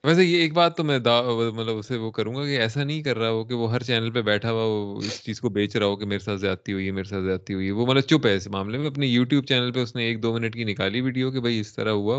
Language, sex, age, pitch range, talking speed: Urdu, male, 20-39, 105-130 Hz, 325 wpm